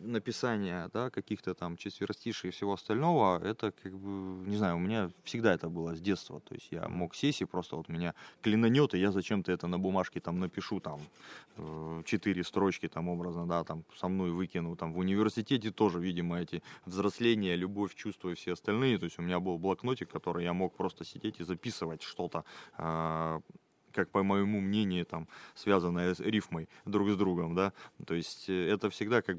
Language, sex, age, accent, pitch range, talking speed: Russian, male, 20-39, native, 85-105 Hz, 185 wpm